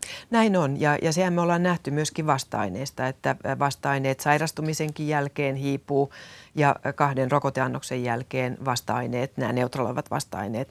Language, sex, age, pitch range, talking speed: Finnish, female, 30-49, 125-140 Hz, 130 wpm